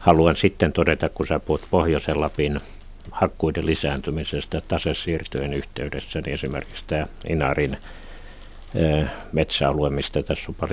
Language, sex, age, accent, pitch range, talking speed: Finnish, male, 60-79, native, 75-95 Hz, 105 wpm